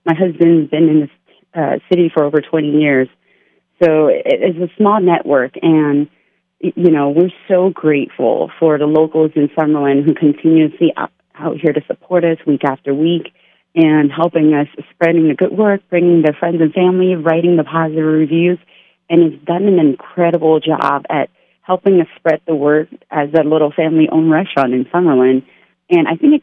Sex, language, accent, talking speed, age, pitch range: female, English, American, 175 wpm, 30-49, 150-175 Hz